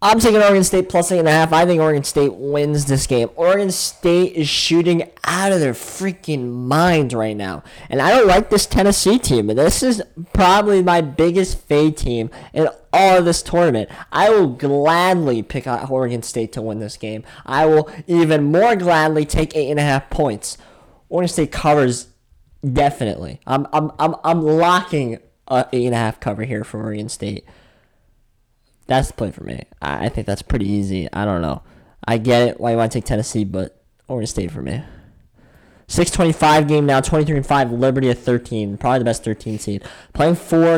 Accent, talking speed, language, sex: American, 195 wpm, English, male